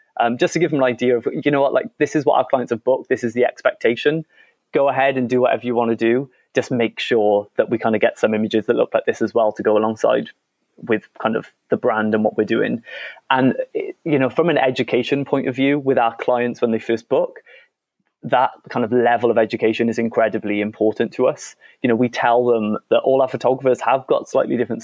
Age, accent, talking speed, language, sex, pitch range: 20-39, British, 240 wpm, English, male, 115-130 Hz